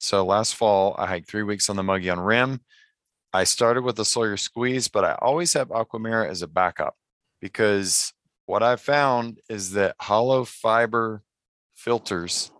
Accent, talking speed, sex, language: American, 165 wpm, male, English